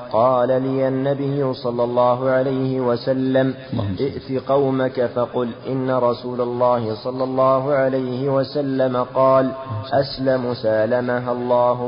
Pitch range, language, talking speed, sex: 125-135 Hz, Arabic, 105 wpm, male